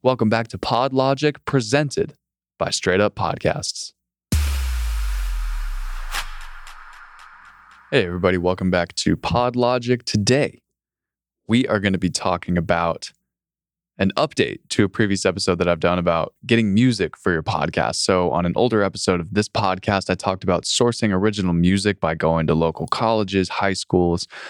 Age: 20-39